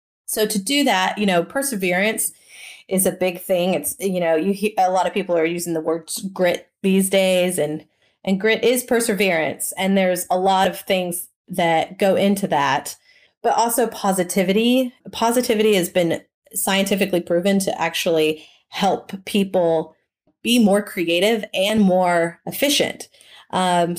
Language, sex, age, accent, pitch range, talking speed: English, female, 30-49, American, 175-215 Hz, 155 wpm